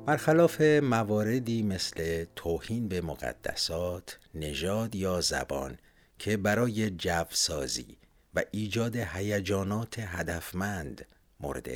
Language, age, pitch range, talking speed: Persian, 60-79, 85-115 Hz, 85 wpm